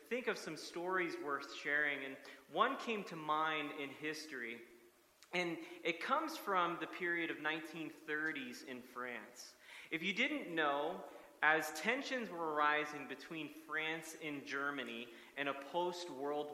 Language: English